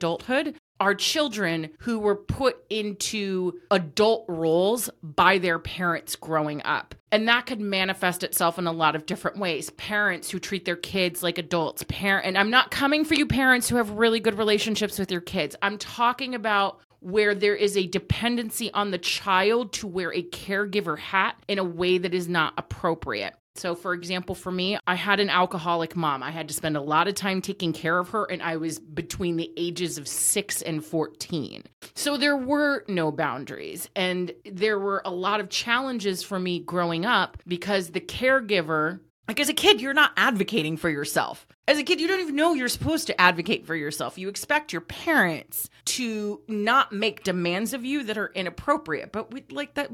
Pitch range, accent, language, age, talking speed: 175-225 Hz, American, English, 30-49, 190 wpm